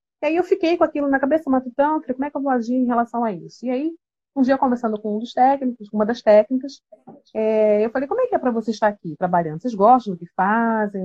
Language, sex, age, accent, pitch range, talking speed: Portuguese, female, 30-49, Brazilian, 220-270 Hz, 270 wpm